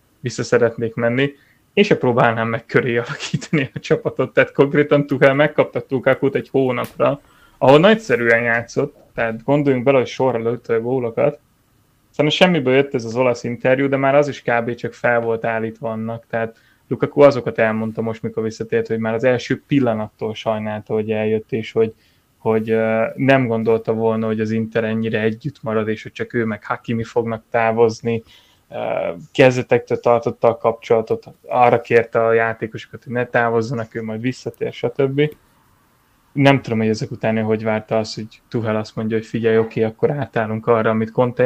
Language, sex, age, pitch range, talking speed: Hungarian, male, 20-39, 115-130 Hz, 170 wpm